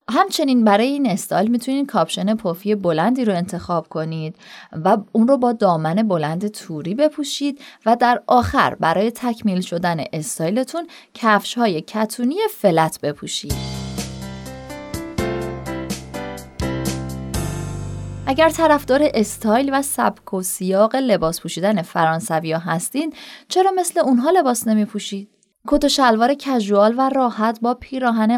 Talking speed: 110 wpm